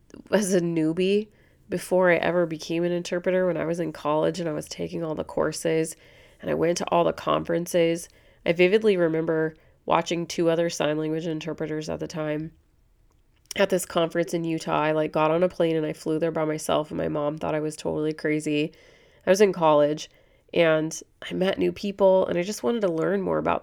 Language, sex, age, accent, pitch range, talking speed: English, female, 30-49, American, 155-185 Hz, 210 wpm